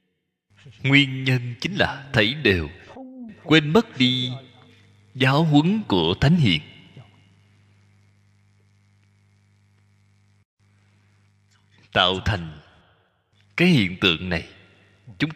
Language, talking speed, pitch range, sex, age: Vietnamese, 80 wpm, 100-150 Hz, male, 20-39